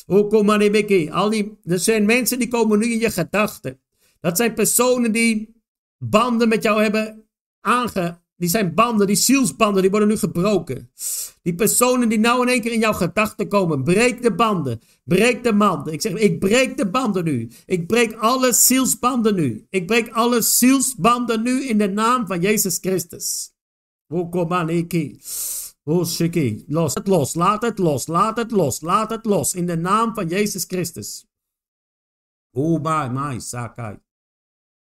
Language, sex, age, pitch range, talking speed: Dutch, male, 50-69, 135-220 Hz, 160 wpm